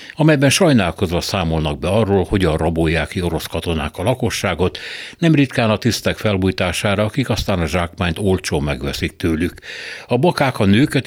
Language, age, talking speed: Hungarian, 60-79, 155 wpm